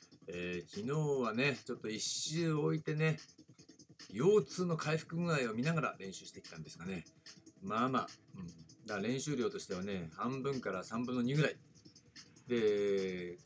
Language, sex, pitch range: Japanese, male, 100-170 Hz